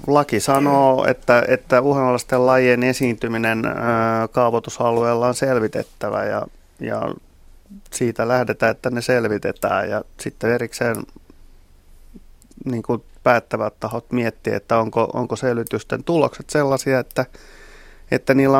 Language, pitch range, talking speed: Finnish, 115-130 Hz, 110 wpm